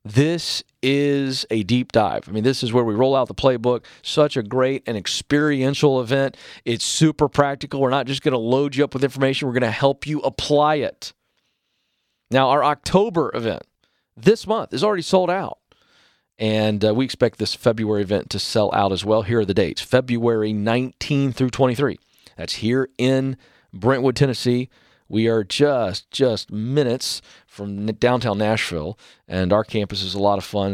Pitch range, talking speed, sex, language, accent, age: 105-135 Hz, 180 wpm, male, English, American, 40-59